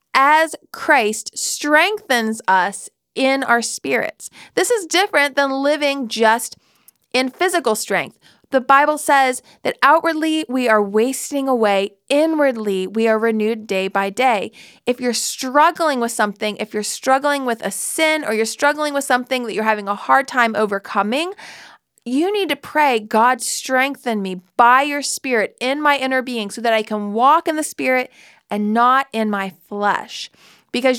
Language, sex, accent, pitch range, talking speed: English, female, American, 220-285 Hz, 160 wpm